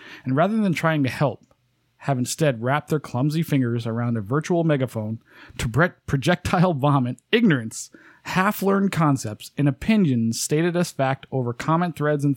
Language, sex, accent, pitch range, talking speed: English, male, American, 125-160 Hz, 150 wpm